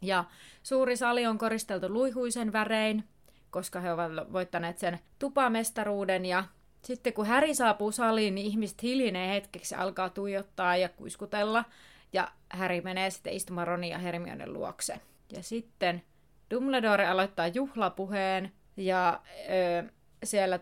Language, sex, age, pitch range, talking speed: Finnish, female, 30-49, 180-220 Hz, 125 wpm